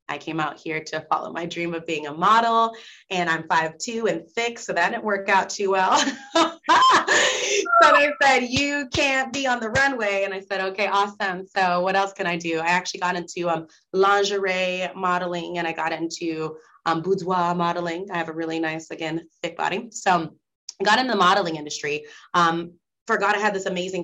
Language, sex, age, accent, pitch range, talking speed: English, female, 30-49, American, 175-240 Hz, 200 wpm